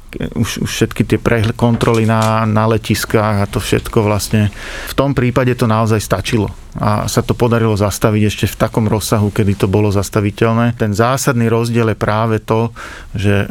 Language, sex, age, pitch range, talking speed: Slovak, male, 40-59, 105-115 Hz, 170 wpm